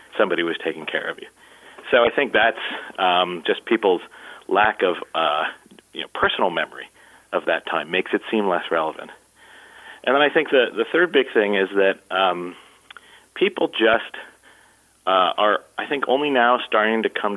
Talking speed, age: 170 wpm, 40-59